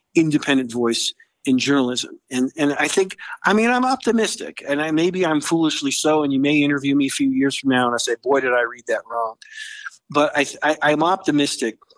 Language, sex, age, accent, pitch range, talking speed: English, male, 50-69, American, 130-165 Hz, 210 wpm